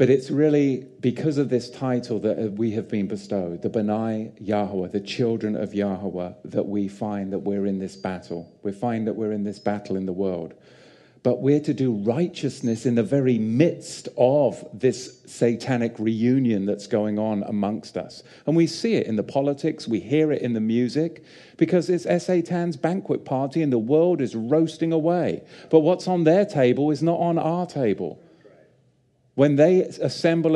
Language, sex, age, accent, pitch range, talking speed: English, male, 40-59, British, 115-160 Hz, 180 wpm